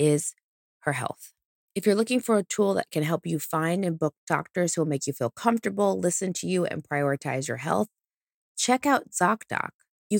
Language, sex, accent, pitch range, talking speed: English, female, American, 145-190 Hz, 200 wpm